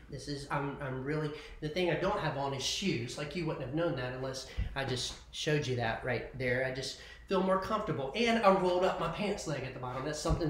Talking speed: 250 wpm